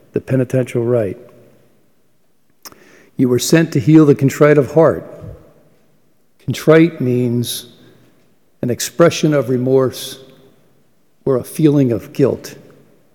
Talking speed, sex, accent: 105 wpm, male, American